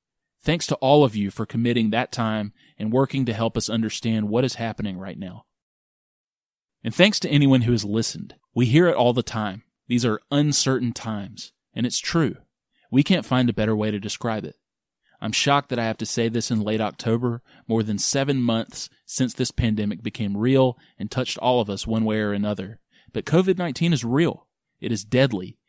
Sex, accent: male, American